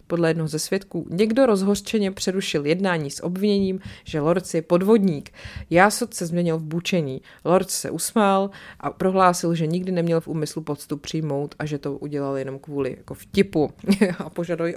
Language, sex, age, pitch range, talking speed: Czech, female, 30-49, 165-205 Hz, 165 wpm